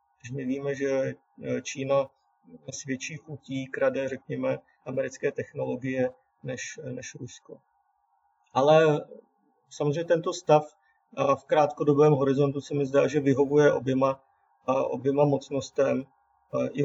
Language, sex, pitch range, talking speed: Czech, male, 130-150 Hz, 105 wpm